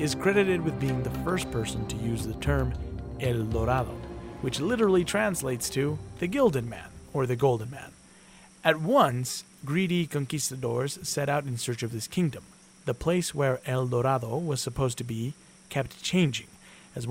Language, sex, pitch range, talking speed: English, male, 120-160 Hz, 165 wpm